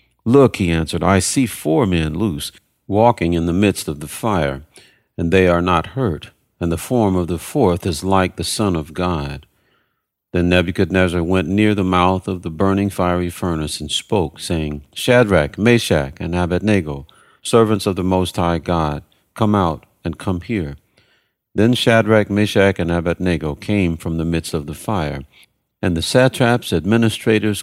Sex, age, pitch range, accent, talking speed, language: male, 50-69, 80-100 Hz, American, 165 wpm, English